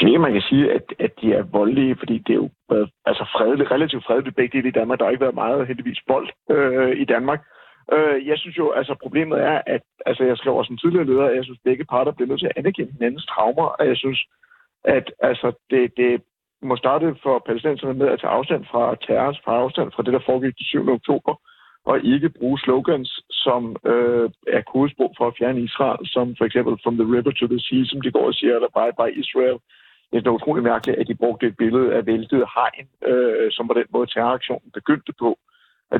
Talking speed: 225 wpm